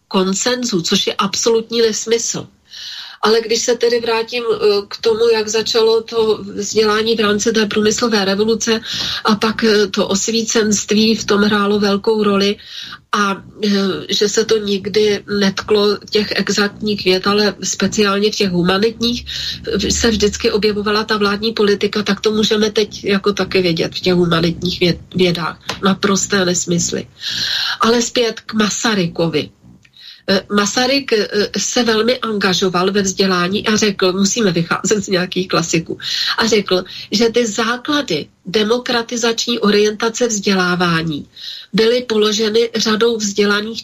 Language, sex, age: Slovak, female, 40-59